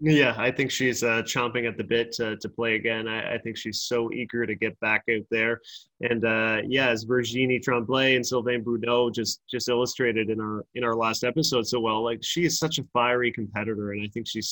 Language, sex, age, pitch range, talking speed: English, male, 20-39, 115-125 Hz, 225 wpm